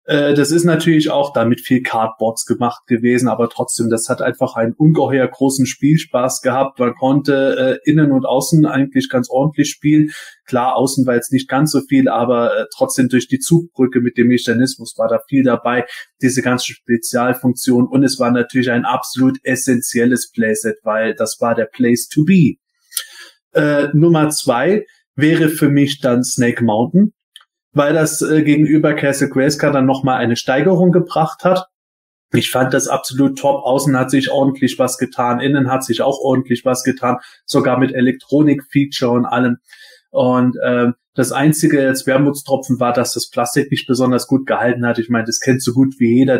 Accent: German